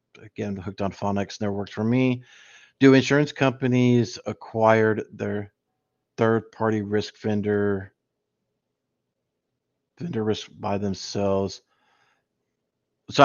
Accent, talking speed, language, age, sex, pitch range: American, 100 wpm, English, 50-69, male, 100-120 Hz